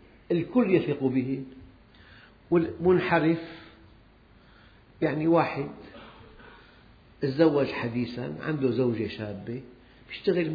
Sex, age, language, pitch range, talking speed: male, 50-69, Arabic, 115-160 Hz, 70 wpm